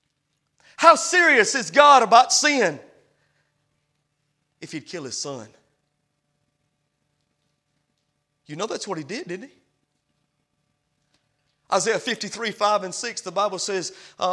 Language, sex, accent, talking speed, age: English, male, American, 115 wpm, 30-49